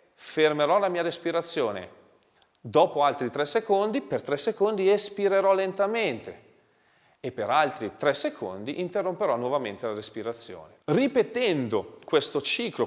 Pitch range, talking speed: 130-195 Hz, 115 wpm